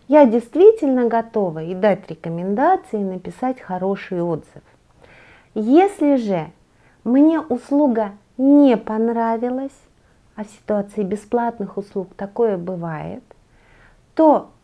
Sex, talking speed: female, 95 wpm